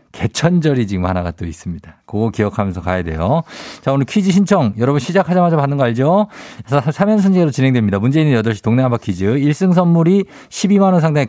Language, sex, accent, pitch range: Korean, male, native, 115-165 Hz